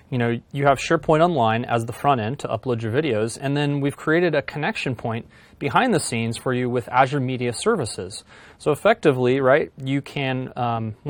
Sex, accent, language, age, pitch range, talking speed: male, American, English, 30-49, 120-155 Hz, 195 wpm